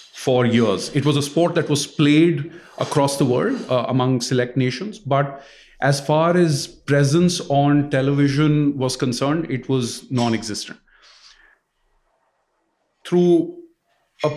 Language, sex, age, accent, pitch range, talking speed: English, male, 40-59, Indian, 120-145 Hz, 125 wpm